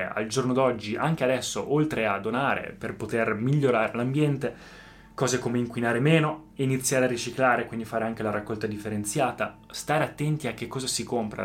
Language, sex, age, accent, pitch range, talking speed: Italian, male, 20-39, native, 115-130 Hz, 170 wpm